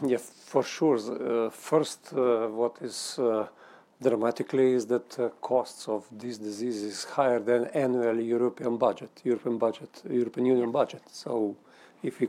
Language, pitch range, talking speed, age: English, 115-125 Hz, 150 wpm, 50-69